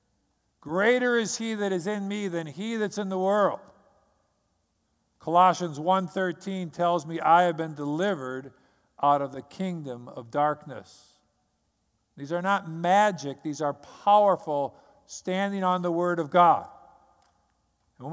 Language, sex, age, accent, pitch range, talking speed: English, male, 50-69, American, 145-185 Hz, 135 wpm